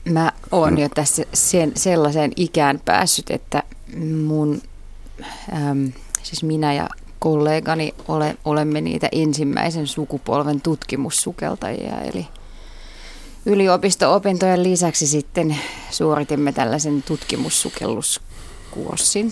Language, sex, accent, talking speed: Finnish, female, native, 80 wpm